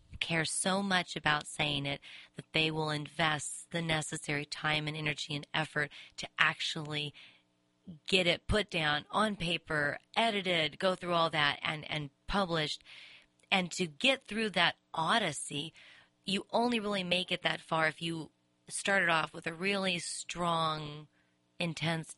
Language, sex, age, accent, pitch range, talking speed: English, female, 30-49, American, 150-180 Hz, 150 wpm